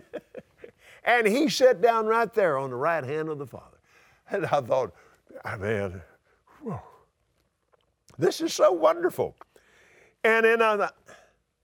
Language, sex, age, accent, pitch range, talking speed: English, male, 50-69, American, 200-330 Hz, 135 wpm